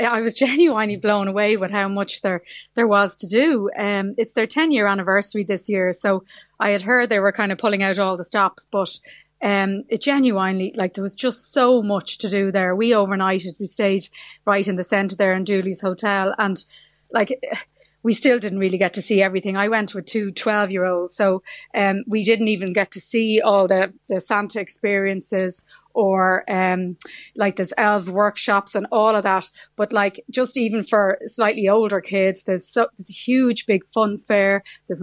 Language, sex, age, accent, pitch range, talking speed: English, female, 30-49, Irish, 195-220 Hz, 195 wpm